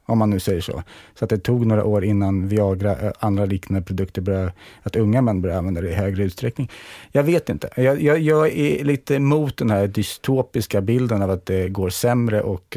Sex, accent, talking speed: male, Norwegian, 215 wpm